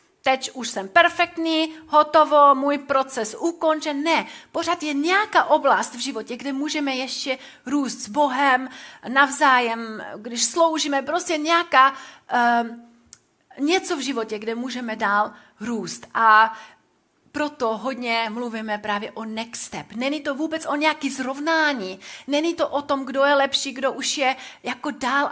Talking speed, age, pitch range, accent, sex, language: 140 wpm, 30-49, 220-290 Hz, native, female, Czech